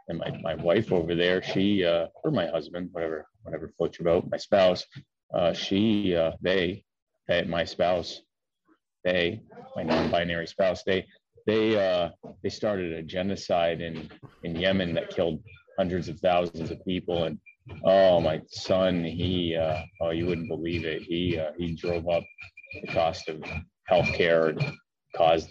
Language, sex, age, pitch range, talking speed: English, male, 30-49, 80-95 Hz, 160 wpm